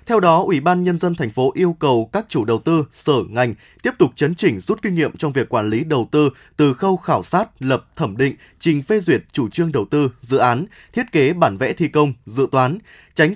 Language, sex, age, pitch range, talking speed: Vietnamese, male, 20-39, 135-180 Hz, 245 wpm